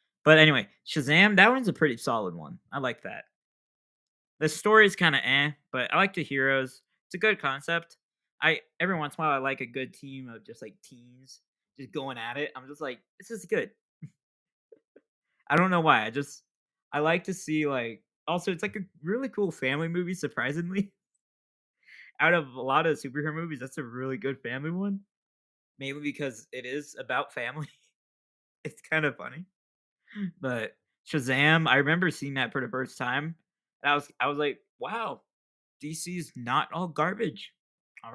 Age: 20-39